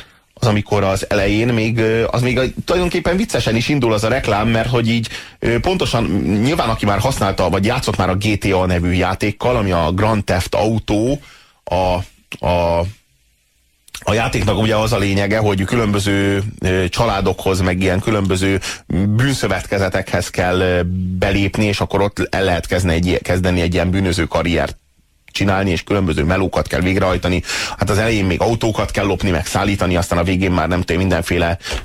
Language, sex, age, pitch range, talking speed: Hungarian, male, 30-49, 90-110 Hz, 155 wpm